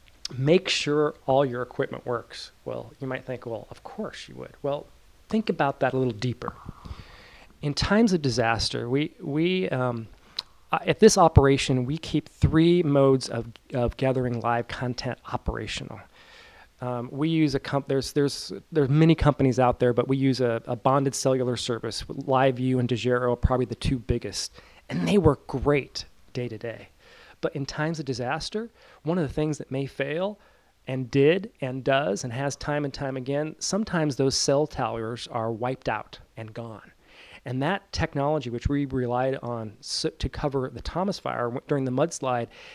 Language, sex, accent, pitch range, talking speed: English, male, American, 120-145 Hz, 175 wpm